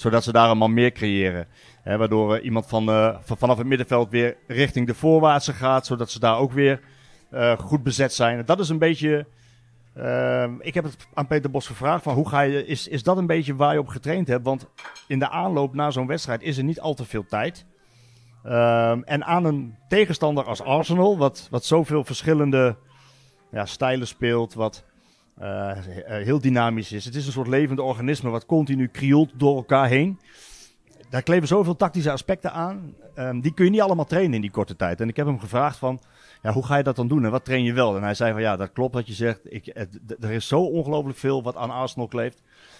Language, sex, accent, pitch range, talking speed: Dutch, male, Dutch, 115-145 Hz, 215 wpm